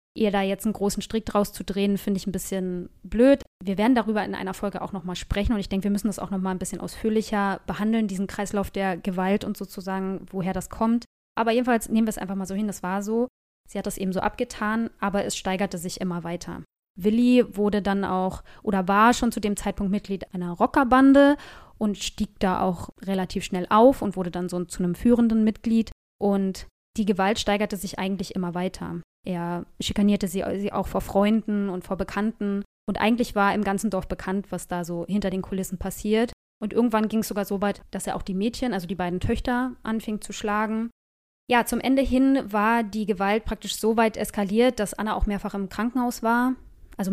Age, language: 20-39, German